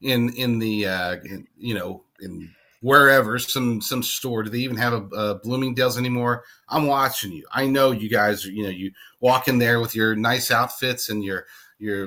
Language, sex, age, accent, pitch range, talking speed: English, male, 40-59, American, 110-140 Hz, 200 wpm